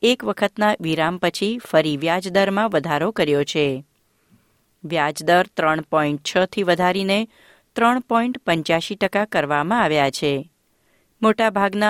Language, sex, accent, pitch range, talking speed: Gujarati, female, native, 160-205 Hz, 85 wpm